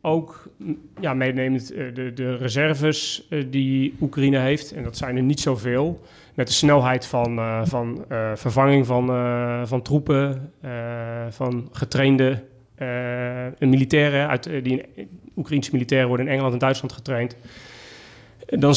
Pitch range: 125-140 Hz